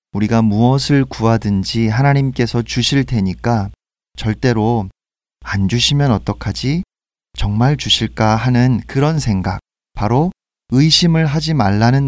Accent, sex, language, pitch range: native, male, Korean, 105-140 Hz